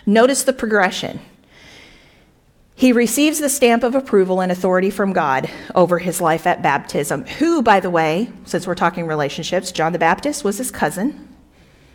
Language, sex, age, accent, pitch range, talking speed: English, female, 40-59, American, 175-245 Hz, 160 wpm